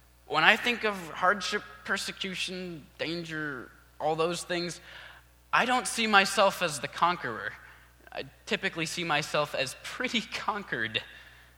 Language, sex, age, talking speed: English, male, 20-39, 125 wpm